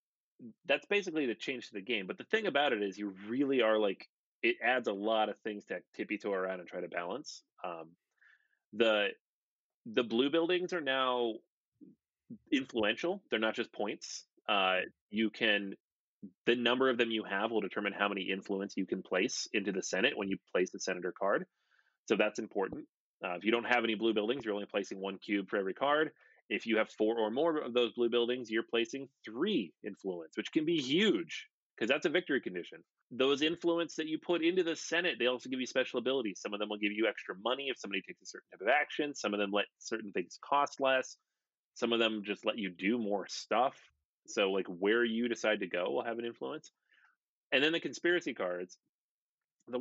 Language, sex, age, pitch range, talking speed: English, male, 30-49, 105-140 Hz, 210 wpm